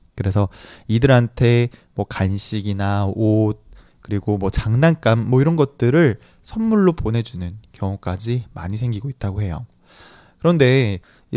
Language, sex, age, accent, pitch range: Chinese, male, 20-39, Korean, 100-140 Hz